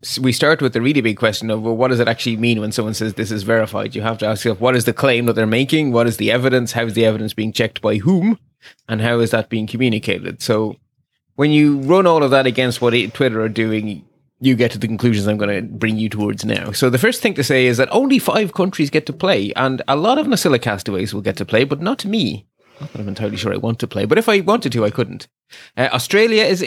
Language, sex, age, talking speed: English, male, 20-39, 270 wpm